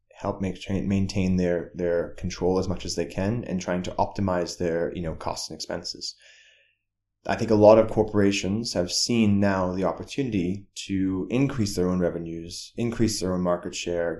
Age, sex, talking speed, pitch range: 20-39, male, 165 wpm, 85-100 Hz